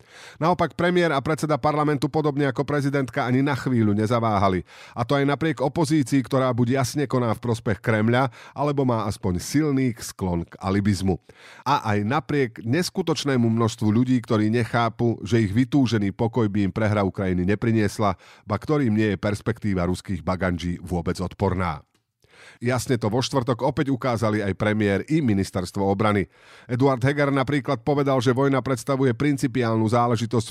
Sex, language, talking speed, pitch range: male, Slovak, 150 wpm, 105-140 Hz